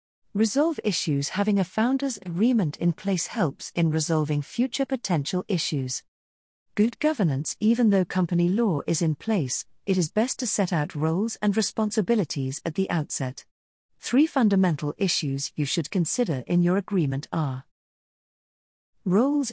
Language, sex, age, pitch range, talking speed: English, female, 50-69, 155-215 Hz, 140 wpm